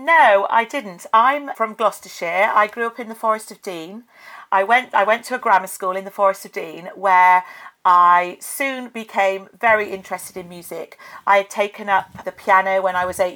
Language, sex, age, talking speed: English, female, 40-59, 200 wpm